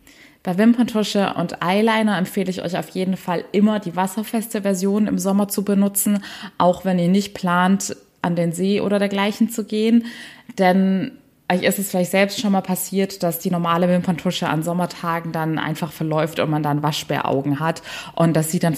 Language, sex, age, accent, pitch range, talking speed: German, female, 20-39, German, 170-195 Hz, 180 wpm